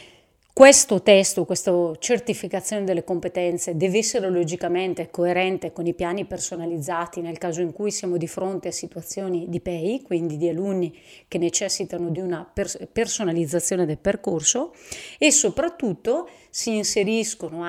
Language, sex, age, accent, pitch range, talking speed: Italian, female, 30-49, native, 175-210 Hz, 130 wpm